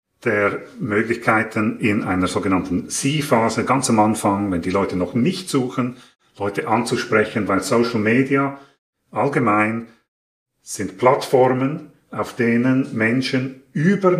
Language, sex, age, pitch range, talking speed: German, male, 40-59, 105-135 Hz, 115 wpm